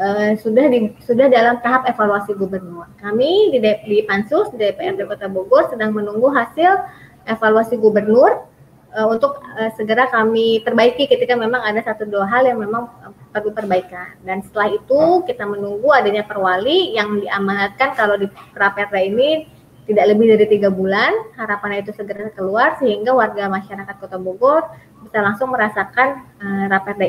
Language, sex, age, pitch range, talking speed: Indonesian, female, 20-39, 200-245 Hz, 155 wpm